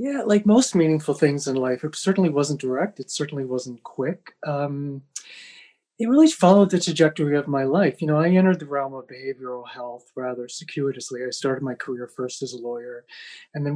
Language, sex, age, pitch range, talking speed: English, male, 30-49, 130-165 Hz, 195 wpm